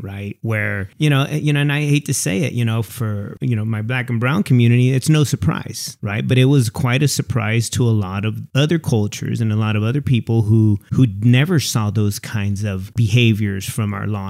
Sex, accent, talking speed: male, American, 230 wpm